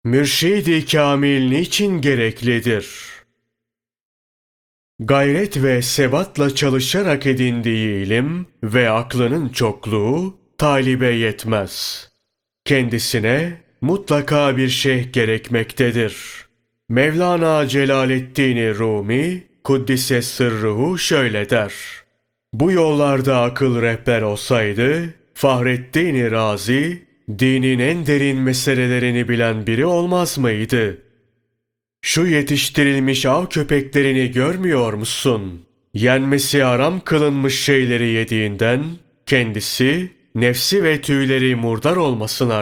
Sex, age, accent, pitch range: male, 30-49, native, 115-145 Hz